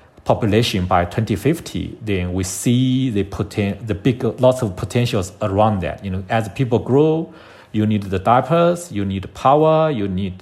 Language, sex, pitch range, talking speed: English, male, 100-130 Hz, 165 wpm